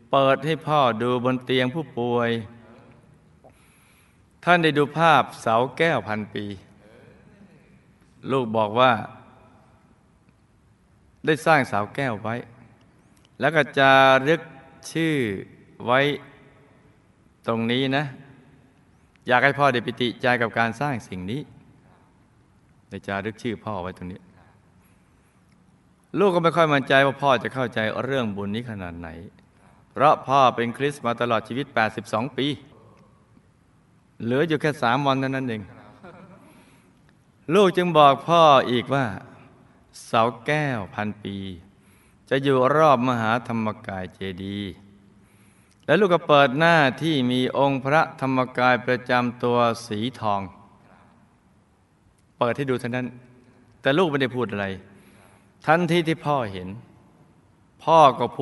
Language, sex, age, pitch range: Thai, male, 20-39, 110-140 Hz